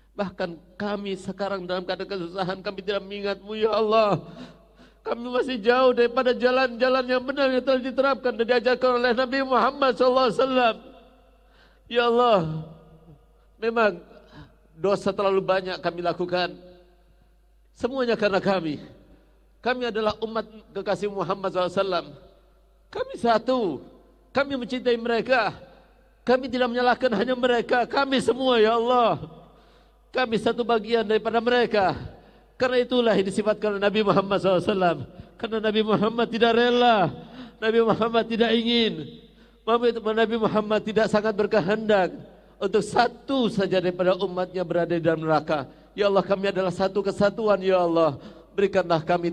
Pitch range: 190-240 Hz